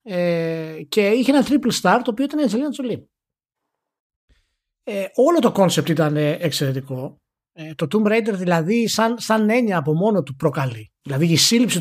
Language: Greek